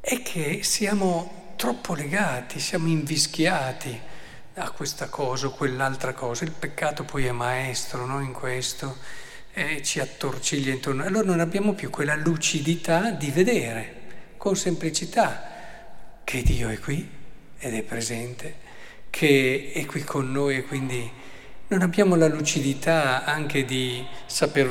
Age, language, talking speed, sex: 50-69, Italian, 135 wpm, male